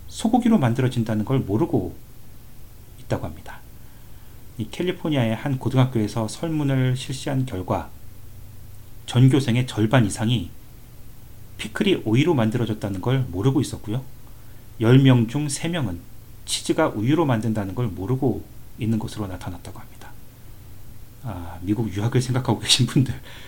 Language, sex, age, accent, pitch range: Korean, male, 40-59, native, 105-125 Hz